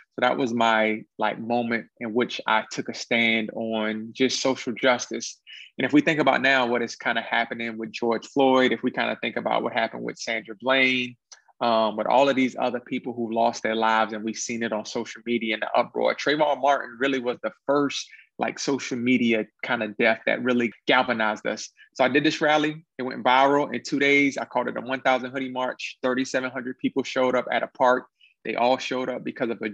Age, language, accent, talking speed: 30-49, English, American, 220 wpm